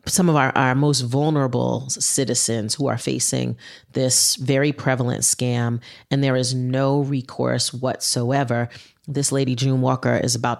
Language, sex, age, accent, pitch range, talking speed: English, female, 30-49, American, 120-135 Hz, 145 wpm